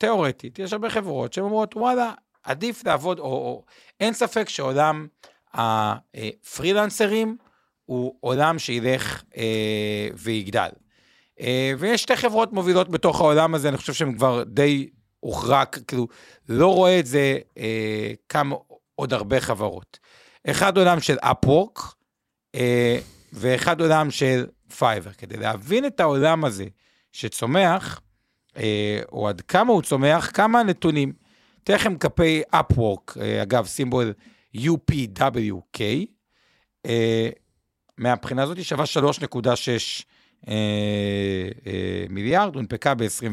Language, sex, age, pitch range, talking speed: Hebrew, male, 50-69, 115-180 Hz, 105 wpm